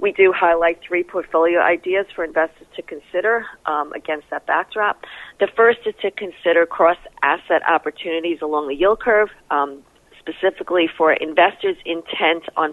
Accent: American